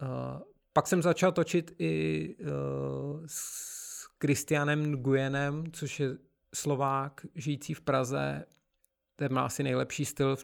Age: 40-59